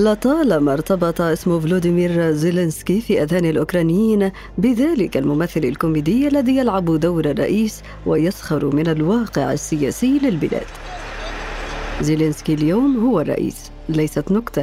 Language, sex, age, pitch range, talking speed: Arabic, female, 50-69, 155-225 Hz, 105 wpm